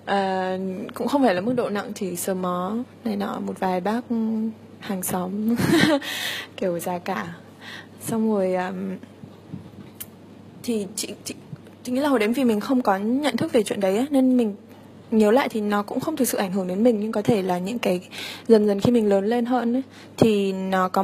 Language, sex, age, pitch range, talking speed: Vietnamese, female, 20-39, 190-235 Hz, 210 wpm